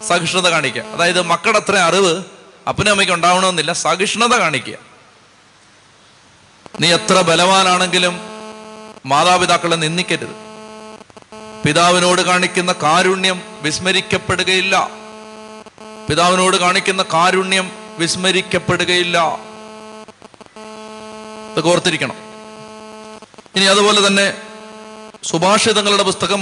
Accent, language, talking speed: native, Malayalam, 65 wpm